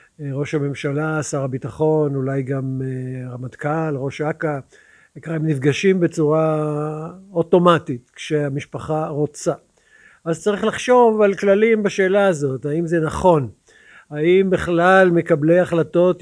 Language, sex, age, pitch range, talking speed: Hebrew, male, 50-69, 145-170 Hz, 110 wpm